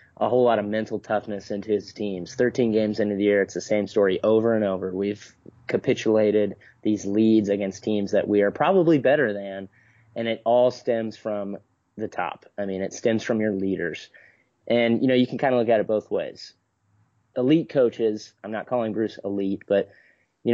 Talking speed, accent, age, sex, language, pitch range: 200 wpm, American, 30-49, male, English, 100-115 Hz